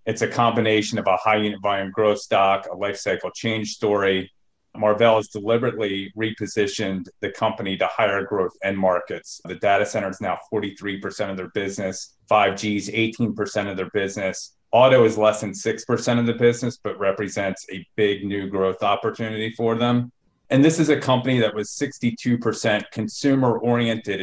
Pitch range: 95-115 Hz